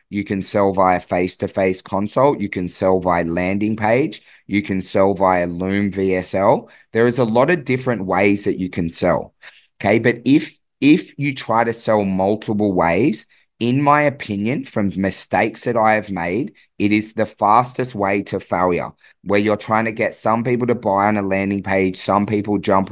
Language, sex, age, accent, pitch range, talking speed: English, male, 20-39, Australian, 95-115 Hz, 185 wpm